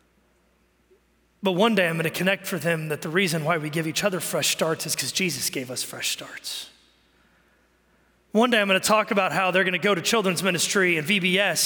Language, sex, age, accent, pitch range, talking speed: English, male, 30-49, American, 190-265 Hz, 210 wpm